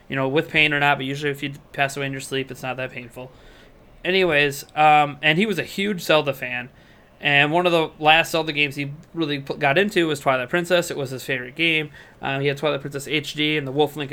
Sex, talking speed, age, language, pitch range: male, 240 wpm, 20-39, English, 130-155 Hz